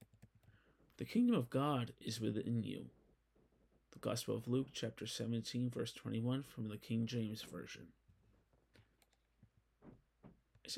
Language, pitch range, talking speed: English, 115-135 Hz, 115 wpm